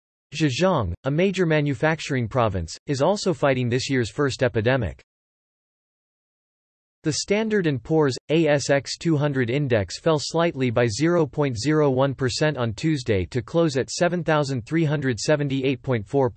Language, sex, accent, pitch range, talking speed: English, male, American, 120-160 Hz, 100 wpm